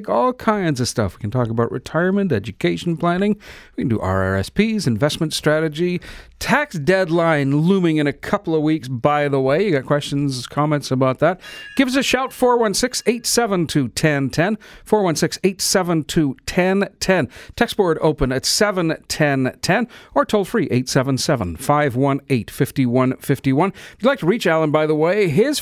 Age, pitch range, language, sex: 50-69, 140-205 Hz, English, male